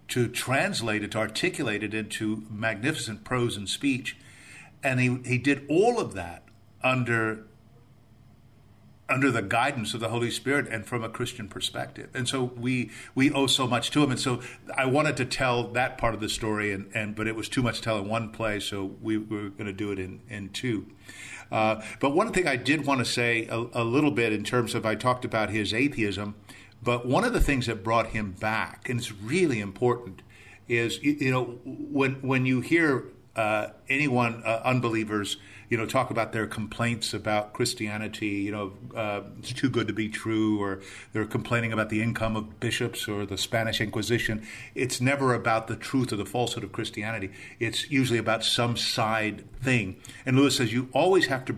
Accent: American